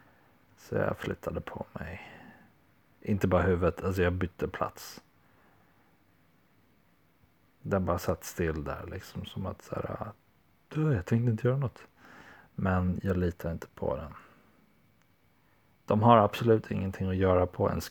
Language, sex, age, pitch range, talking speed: Swedish, male, 40-59, 95-105 Hz, 140 wpm